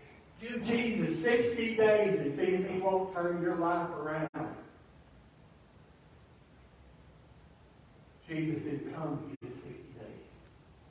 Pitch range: 155-215 Hz